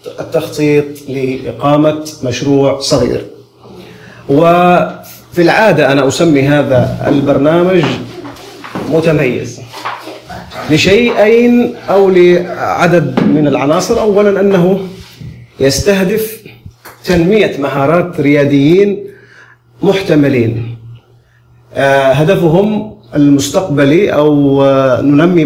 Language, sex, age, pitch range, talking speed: Arabic, male, 40-59, 135-175 Hz, 65 wpm